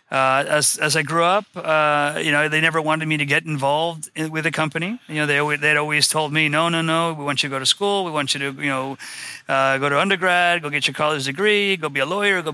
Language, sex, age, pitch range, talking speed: English, male, 30-49, 135-160 Hz, 275 wpm